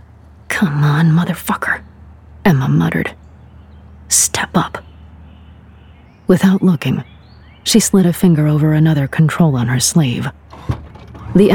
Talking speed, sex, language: 105 wpm, female, English